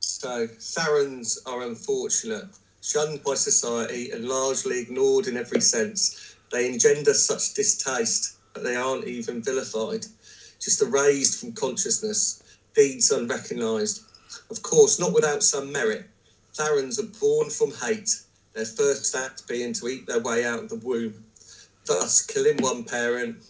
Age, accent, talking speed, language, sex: 40-59, British, 140 wpm, English, male